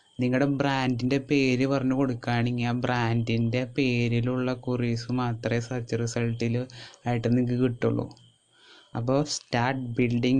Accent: native